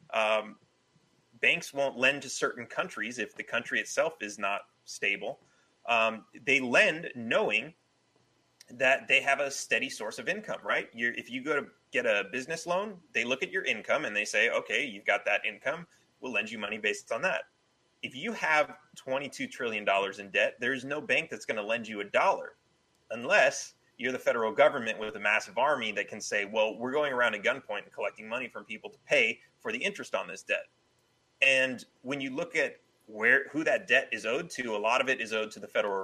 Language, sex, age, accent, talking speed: English, male, 30-49, American, 210 wpm